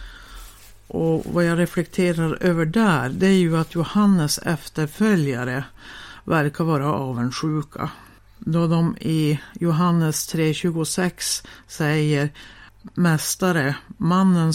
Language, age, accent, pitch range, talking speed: Swedish, 60-79, native, 145-175 Hz, 95 wpm